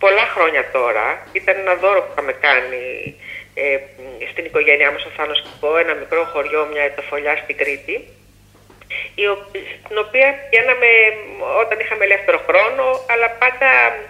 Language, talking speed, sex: Greek, 135 wpm, female